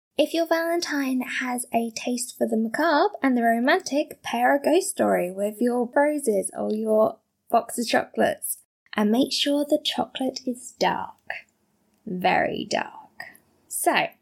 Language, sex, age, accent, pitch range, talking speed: English, female, 20-39, British, 220-275 Hz, 145 wpm